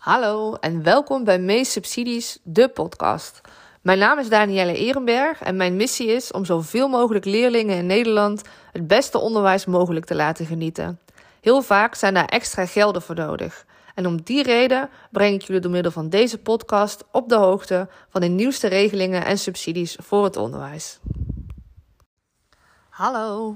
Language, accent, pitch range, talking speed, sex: Dutch, Dutch, 175-225 Hz, 160 wpm, female